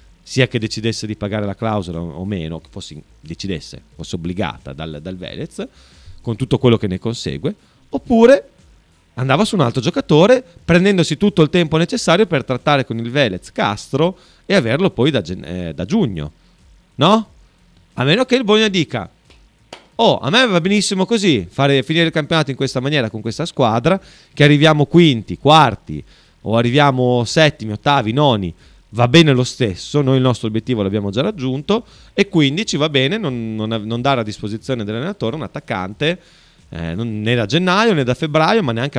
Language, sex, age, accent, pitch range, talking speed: Italian, male, 30-49, native, 100-160 Hz, 175 wpm